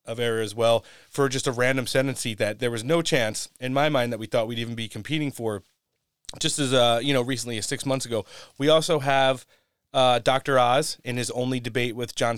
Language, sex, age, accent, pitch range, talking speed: English, male, 30-49, American, 115-135 Hz, 235 wpm